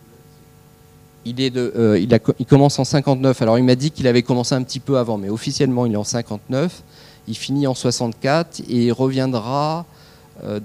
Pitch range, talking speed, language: 105-135 Hz, 190 wpm, French